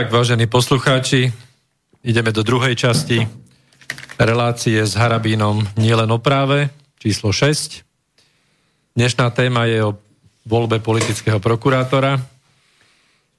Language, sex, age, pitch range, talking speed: Slovak, male, 40-59, 110-130 Hz, 100 wpm